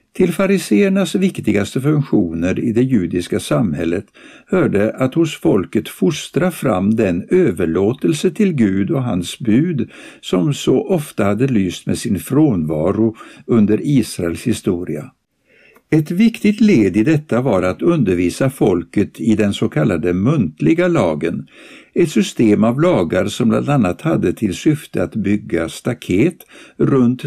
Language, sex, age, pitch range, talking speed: Swedish, male, 60-79, 100-155 Hz, 135 wpm